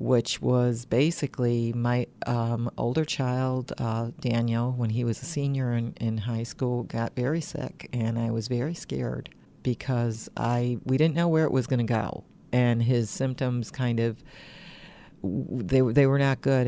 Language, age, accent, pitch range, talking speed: English, 50-69, American, 115-135 Hz, 165 wpm